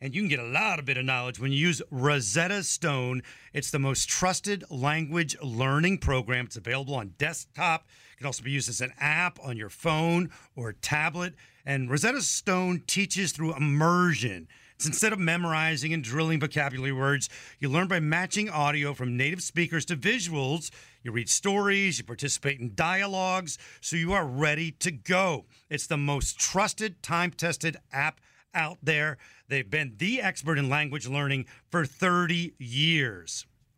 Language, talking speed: English, 165 wpm